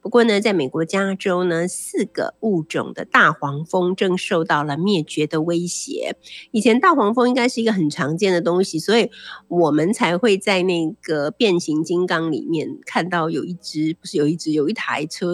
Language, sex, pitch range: Chinese, female, 165-230 Hz